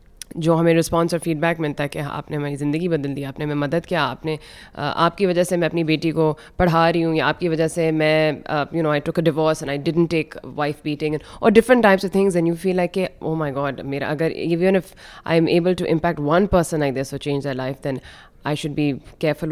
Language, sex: Hindi, female